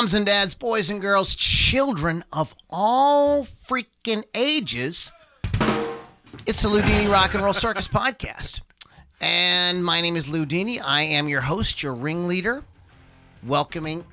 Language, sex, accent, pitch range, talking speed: English, male, American, 130-175 Hz, 125 wpm